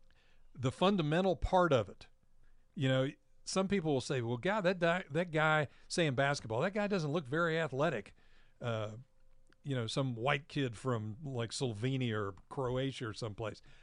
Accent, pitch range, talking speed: American, 125-150 Hz, 165 wpm